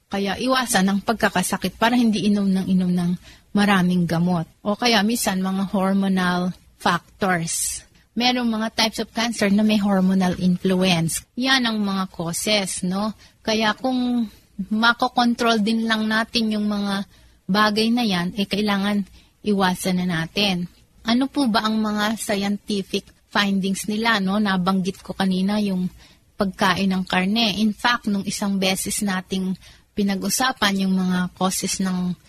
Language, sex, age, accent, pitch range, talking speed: Filipino, female, 30-49, native, 185-215 Hz, 140 wpm